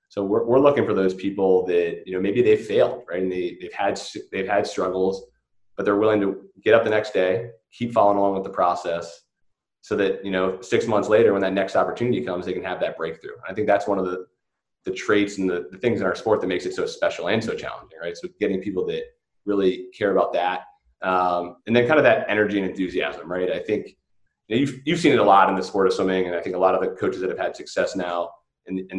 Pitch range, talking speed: 95-125 Hz, 260 wpm